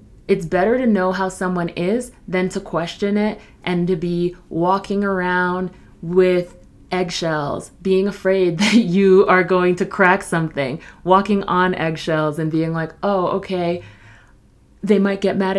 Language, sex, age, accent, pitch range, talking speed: English, female, 30-49, American, 175-215 Hz, 150 wpm